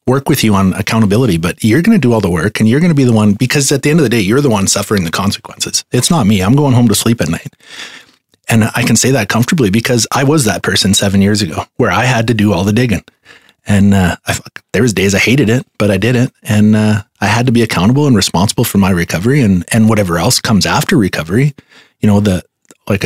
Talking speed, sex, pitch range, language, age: 265 wpm, male, 100-120 Hz, English, 30-49